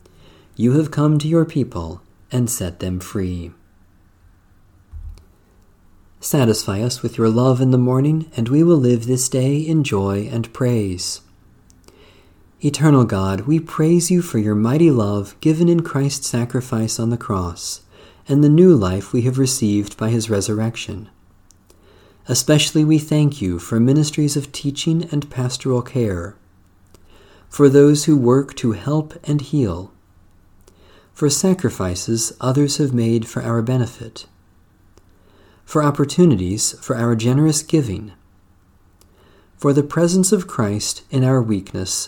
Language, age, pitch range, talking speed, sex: English, 40-59, 95-140 Hz, 135 wpm, male